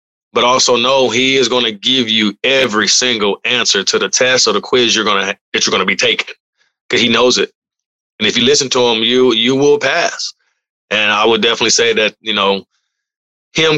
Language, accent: English, American